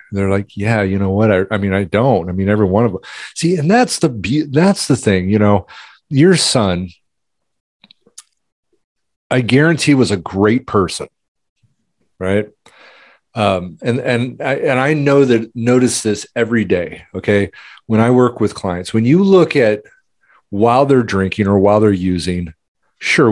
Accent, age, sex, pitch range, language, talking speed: American, 40-59, male, 100-140 Hz, English, 165 wpm